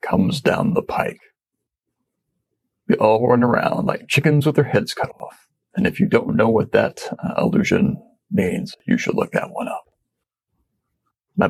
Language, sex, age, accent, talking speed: English, male, 40-59, American, 165 wpm